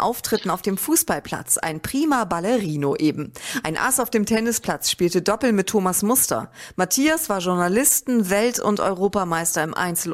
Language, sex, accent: German, female, German